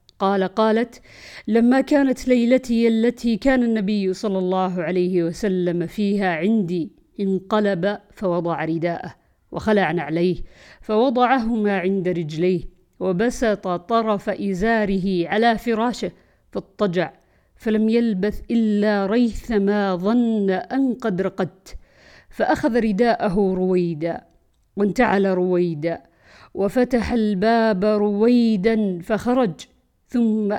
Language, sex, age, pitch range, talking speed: Arabic, female, 50-69, 185-230 Hz, 90 wpm